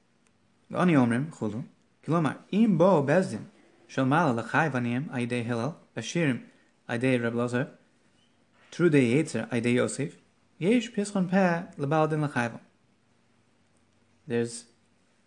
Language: English